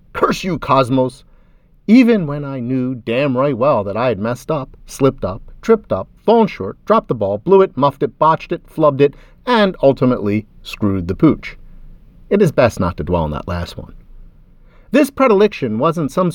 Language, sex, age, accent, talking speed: English, male, 40-59, American, 185 wpm